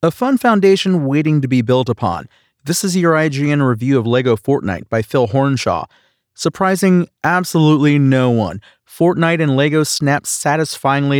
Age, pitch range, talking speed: 30-49, 120-150 Hz, 150 wpm